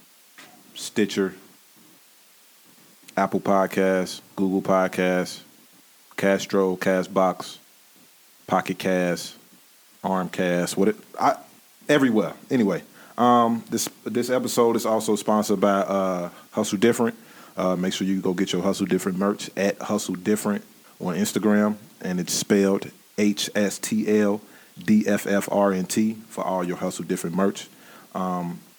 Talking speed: 125 wpm